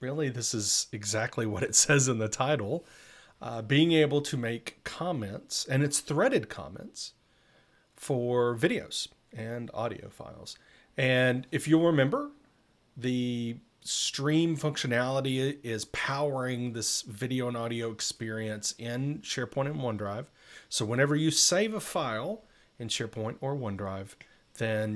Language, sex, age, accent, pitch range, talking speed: English, male, 30-49, American, 110-145 Hz, 130 wpm